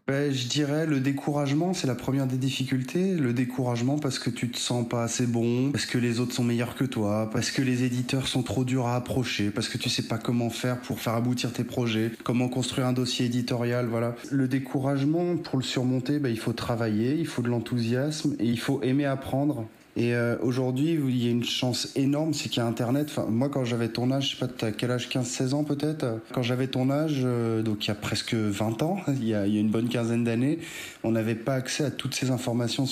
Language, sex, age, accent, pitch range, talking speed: French, male, 20-39, French, 115-140 Hz, 230 wpm